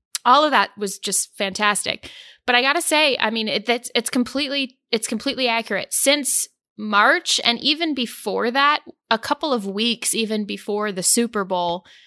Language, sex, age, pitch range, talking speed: English, female, 20-39, 195-240 Hz, 170 wpm